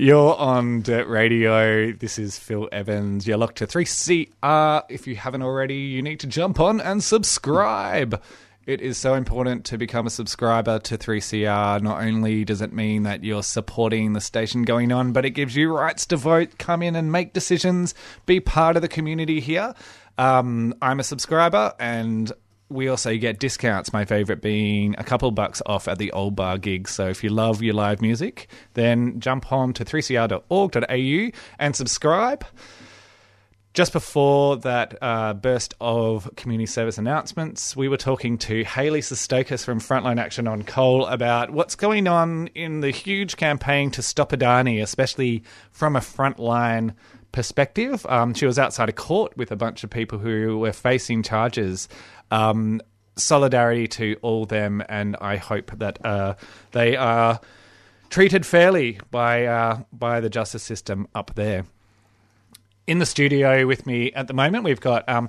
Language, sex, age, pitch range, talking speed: English, male, 20-39, 110-140 Hz, 170 wpm